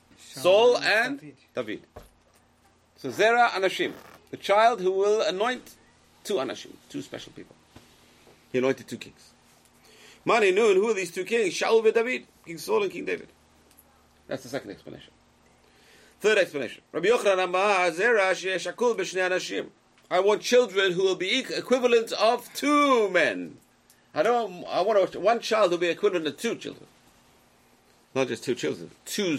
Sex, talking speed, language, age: male, 145 wpm, English, 50-69